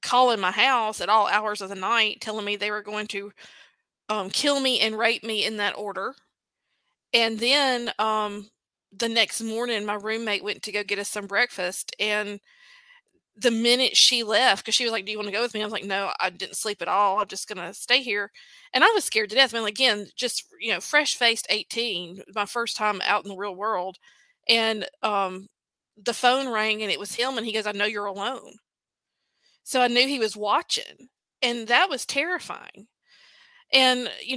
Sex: female